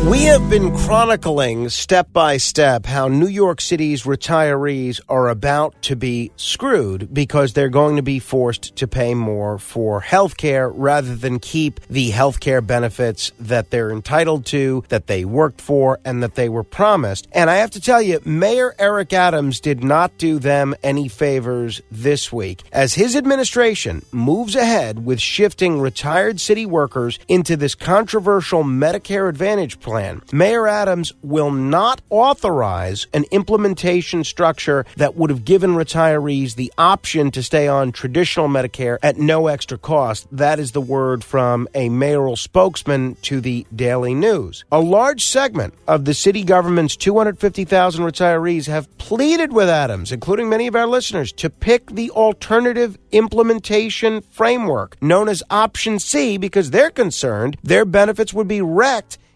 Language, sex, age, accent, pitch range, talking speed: English, male, 40-59, American, 130-195 Hz, 155 wpm